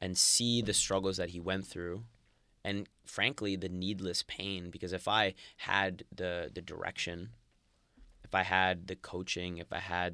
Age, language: 20-39, English